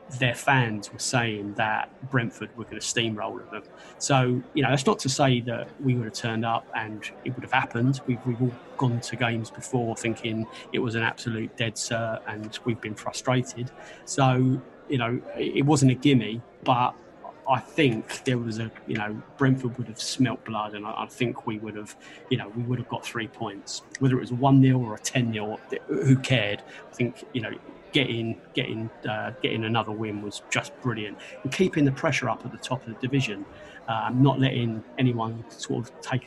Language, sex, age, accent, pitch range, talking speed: English, male, 20-39, British, 115-135 Hz, 205 wpm